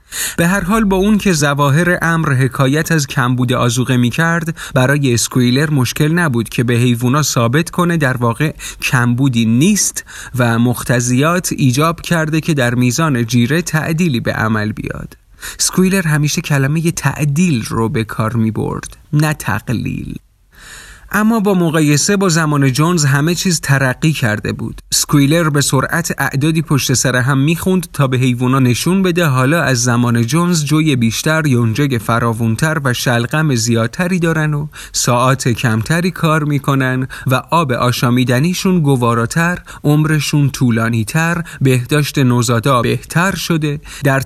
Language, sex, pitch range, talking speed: Persian, male, 125-165 Hz, 140 wpm